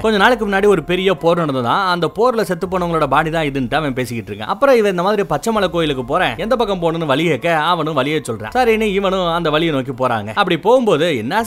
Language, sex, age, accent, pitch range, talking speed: Tamil, male, 30-49, native, 140-200 Hz, 215 wpm